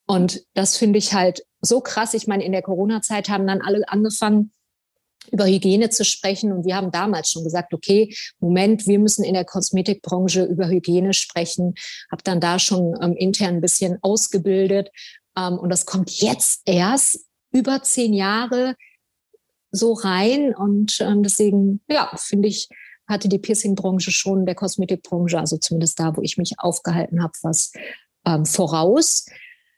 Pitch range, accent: 185-230 Hz, German